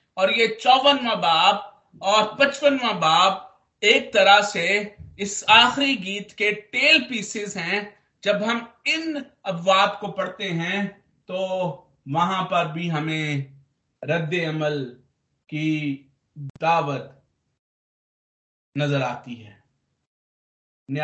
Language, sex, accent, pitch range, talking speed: Hindi, male, native, 145-200 Hz, 100 wpm